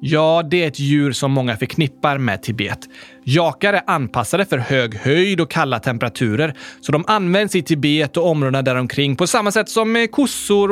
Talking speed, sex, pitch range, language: 185 wpm, male, 130-200 Hz, Swedish